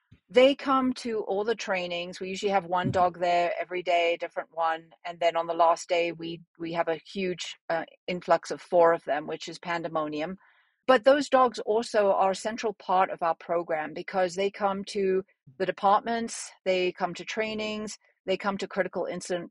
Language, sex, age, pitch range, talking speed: English, female, 40-59, 175-205 Hz, 190 wpm